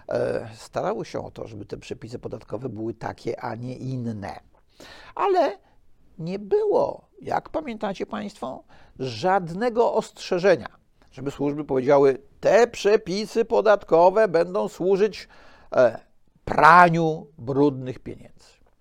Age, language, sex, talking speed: 50-69, Polish, male, 100 wpm